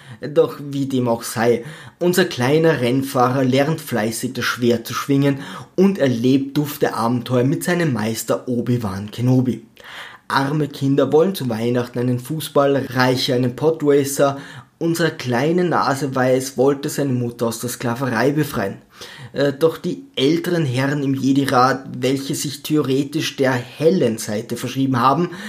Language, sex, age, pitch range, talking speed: German, male, 20-39, 125-155 Hz, 135 wpm